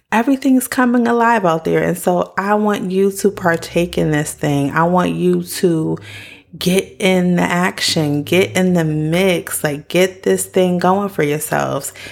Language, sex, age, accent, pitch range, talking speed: English, female, 30-49, American, 150-190 Hz, 170 wpm